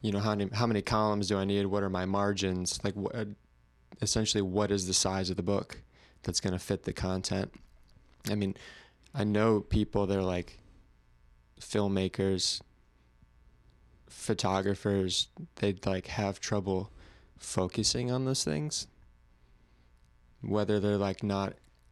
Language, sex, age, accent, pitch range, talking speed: English, male, 20-39, American, 90-100 Hz, 140 wpm